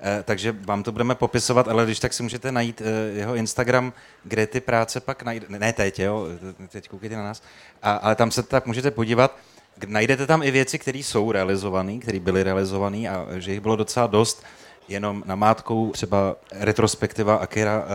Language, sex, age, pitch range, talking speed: Czech, male, 30-49, 100-120 Hz, 175 wpm